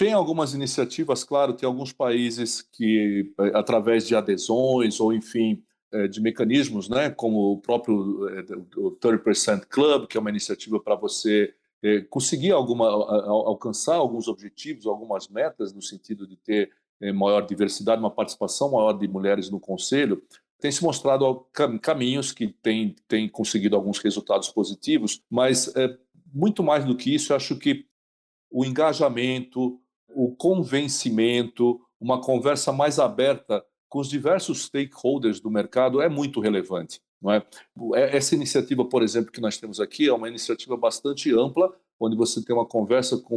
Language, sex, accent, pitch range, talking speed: Portuguese, male, Brazilian, 110-140 Hz, 145 wpm